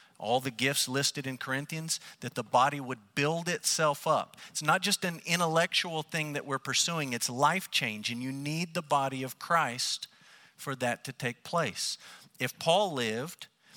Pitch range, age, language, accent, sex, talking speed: 130-165 Hz, 50-69, English, American, male, 175 wpm